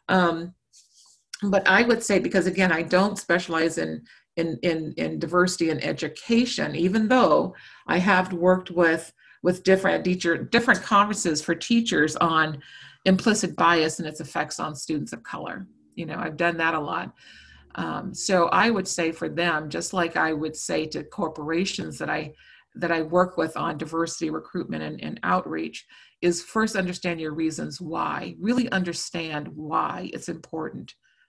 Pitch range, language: 160-200 Hz, English